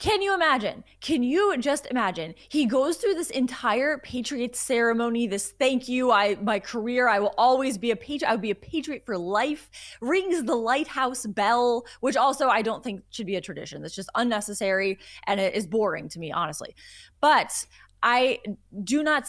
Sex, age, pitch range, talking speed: female, 20-39, 205-260 Hz, 185 wpm